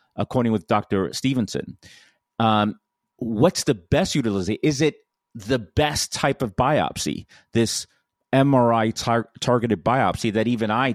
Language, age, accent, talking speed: English, 40-59, American, 125 wpm